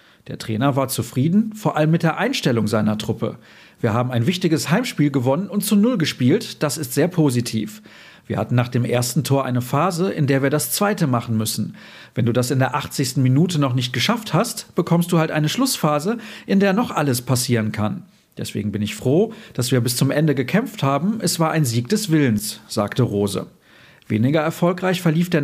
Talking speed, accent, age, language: 200 wpm, German, 40-59, German